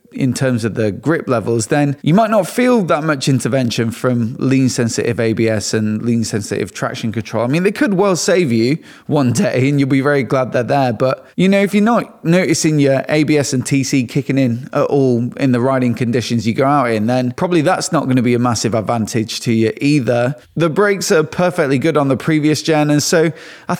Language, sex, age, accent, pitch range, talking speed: English, male, 20-39, British, 120-155 Hz, 220 wpm